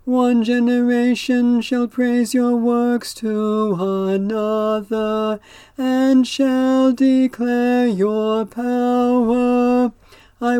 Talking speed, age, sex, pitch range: 80 wpm, 40-59, male, 220-250 Hz